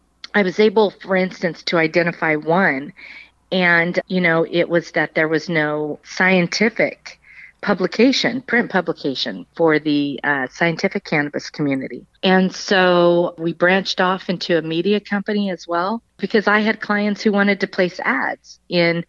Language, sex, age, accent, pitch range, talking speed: English, female, 40-59, American, 165-190 Hz, 150 wpm